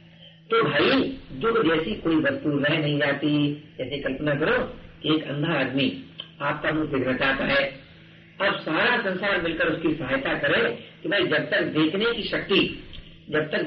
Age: 50-69